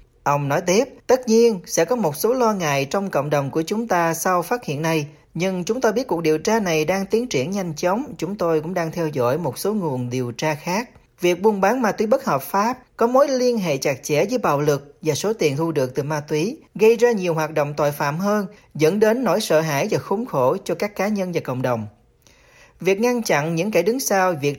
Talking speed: 250 wpm